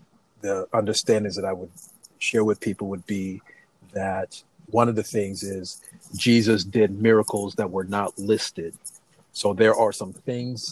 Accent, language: American, English